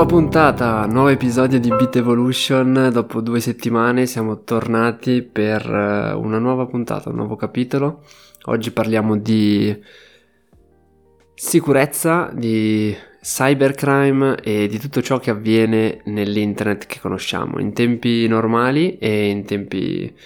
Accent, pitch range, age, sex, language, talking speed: native, 105-125 Hz, 20-39, male, Italian, 115 wpm